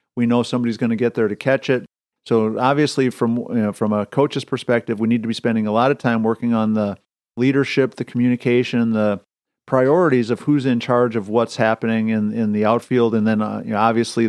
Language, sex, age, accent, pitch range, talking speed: English, male, 50-69, American, 110-125 Hz, 225 wpm